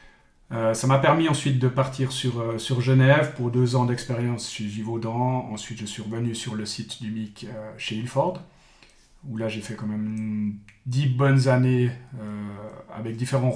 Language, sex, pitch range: French, male, 110-130 Hz